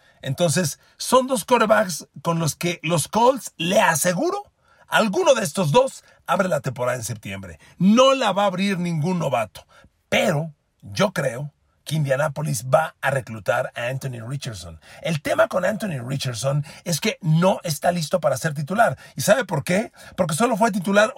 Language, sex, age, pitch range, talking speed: Spanish, male, 40-59, 140-185 Hz, 165 wpm